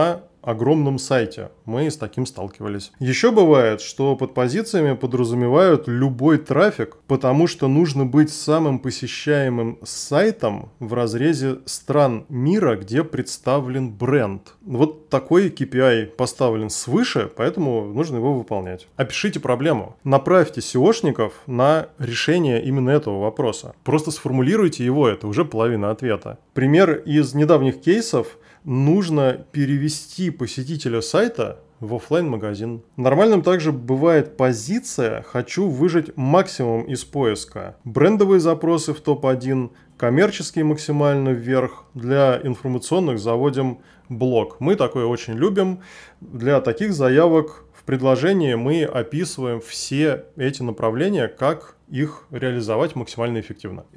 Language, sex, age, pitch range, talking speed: Russian, male, 20-39, 120-155 Hz, 115 wpm